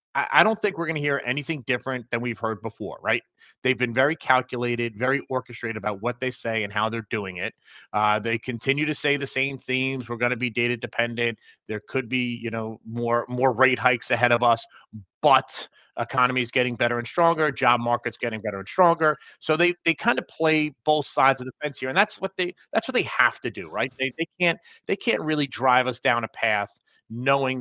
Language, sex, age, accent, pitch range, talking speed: English, male, 30-49, American, 120-150 Hz, 225 wpm